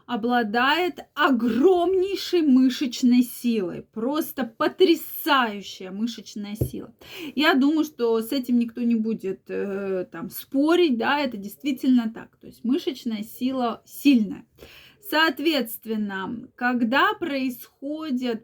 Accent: native